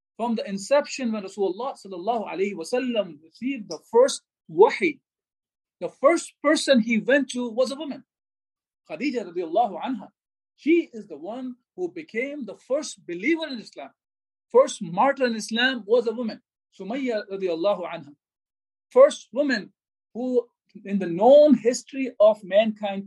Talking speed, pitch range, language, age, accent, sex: 135 wpm, 200-270 Hz, English, 50-69, Indian, male